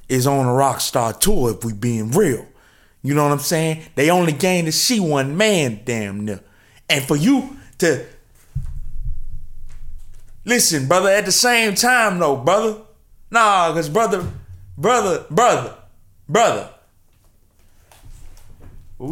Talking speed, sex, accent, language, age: 135 wpm, male, American, English, 20-39